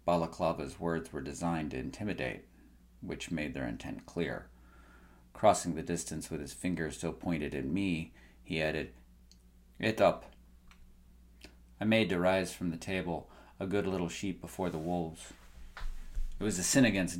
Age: 40-59